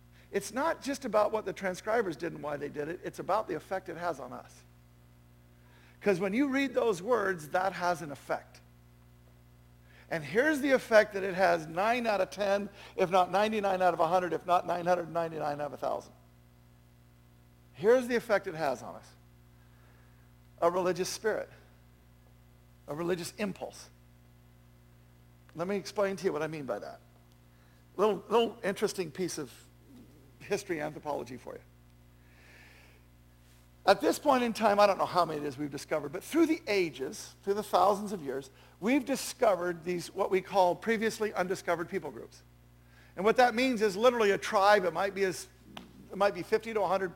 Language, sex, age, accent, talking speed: English, male, 50-69, American, 175 wpm